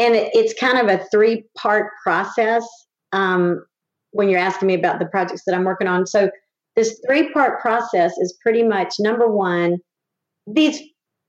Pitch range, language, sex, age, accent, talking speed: 180-255 Hz, English, female, 40-59, American, 155 wpm